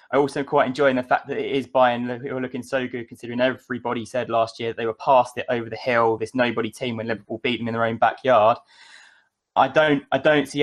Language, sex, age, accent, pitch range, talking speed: English, male, 20-39, British, 115-135 Hz, 235 wpm